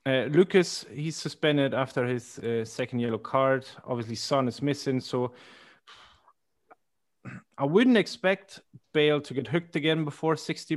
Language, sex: English, male